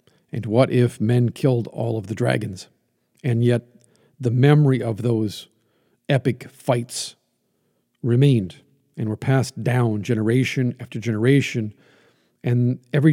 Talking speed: 125 wpm